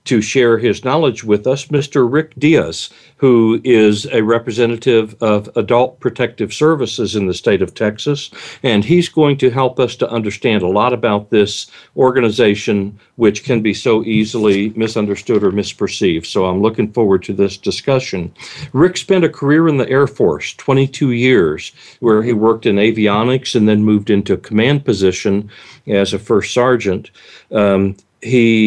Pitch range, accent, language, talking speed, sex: 105-130 Hz, American, English, 165 wpm, male